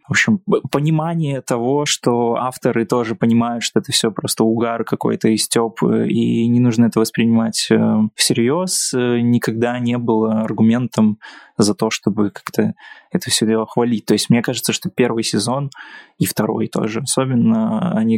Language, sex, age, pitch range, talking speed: Russian, male, 20-39, 110-140 Hz, 150 wpm